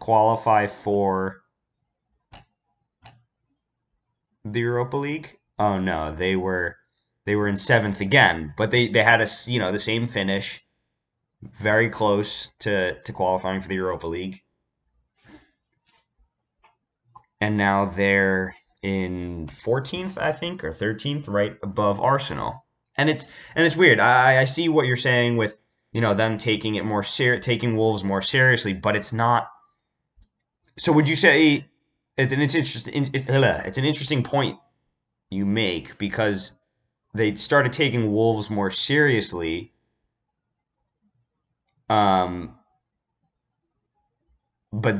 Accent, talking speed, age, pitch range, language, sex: American, 125 wpm, 20-39, 95-120 Hz, English, male